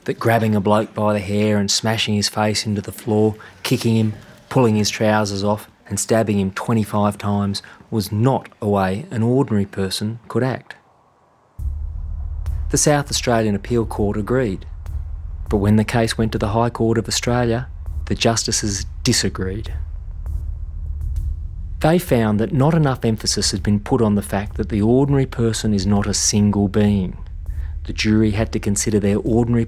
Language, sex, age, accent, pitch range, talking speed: English, male, 30-49, Australian, 90-115 Hz, 165 wpm